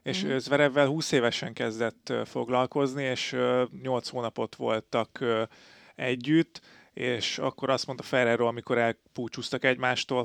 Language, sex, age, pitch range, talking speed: Hungarian, male, 30-49, 115-130 Hz, 110 wpm